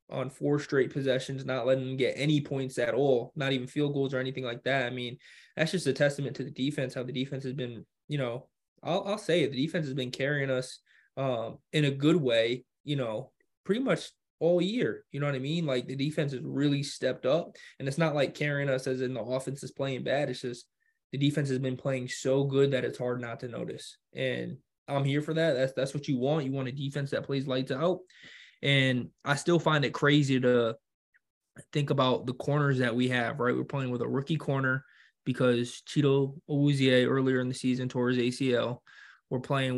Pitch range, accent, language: 130-145 Hz, American, English